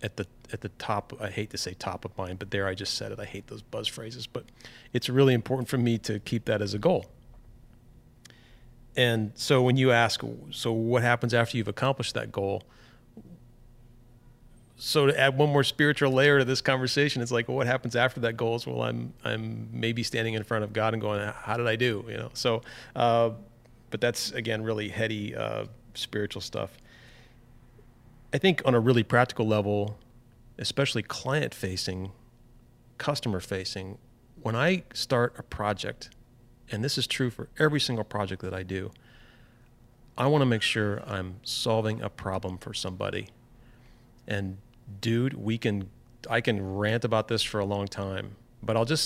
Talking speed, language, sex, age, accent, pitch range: 180 wpm, English, male, 40-59, American, 105-125 Hz